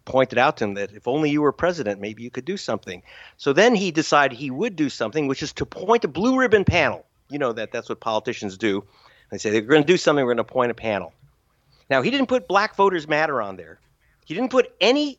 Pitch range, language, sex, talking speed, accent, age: 120-185 Hz, English, male, 255 wpm, American, 50-69